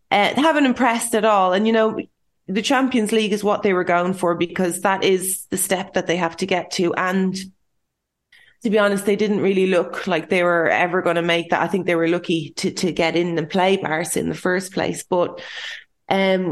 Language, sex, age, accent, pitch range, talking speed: English, female, 20-39, Irish, 180-215 Hz, 230 wpm